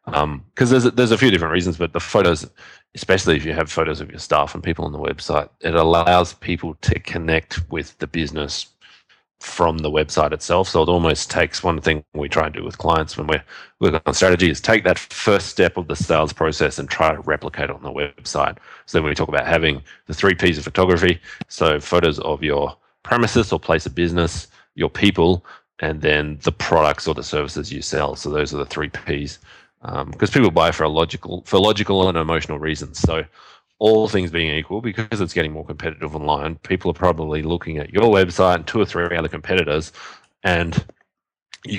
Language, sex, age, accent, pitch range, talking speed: English, male, 30-49, Australian, 75-90 Hz, 210 wpm